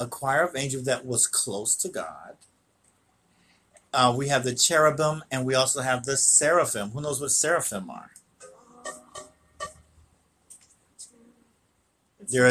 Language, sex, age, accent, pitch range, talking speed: English, male, 50-69, American, 125-175 Hz, 125 wpm